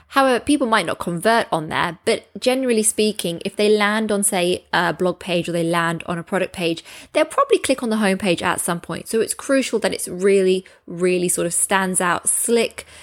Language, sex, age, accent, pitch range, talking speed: English, female, 20-39, British, 170-220 Hz, 210 wpm